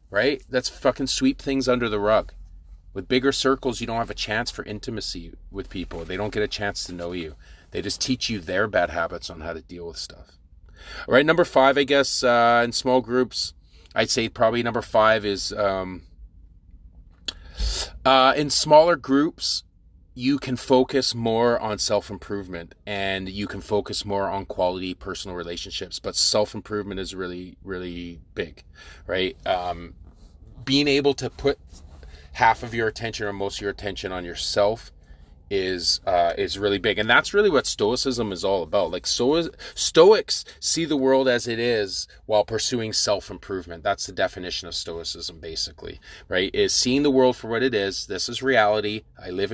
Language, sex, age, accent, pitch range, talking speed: English, male, 30-49, American, 85-120 Hz, 175 wpm